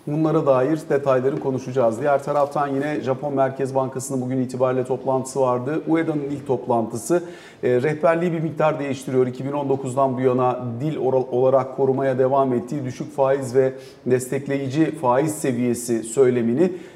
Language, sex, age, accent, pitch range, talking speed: Turkish, male, 50-69, native, 130-165 Hz, 125 wpm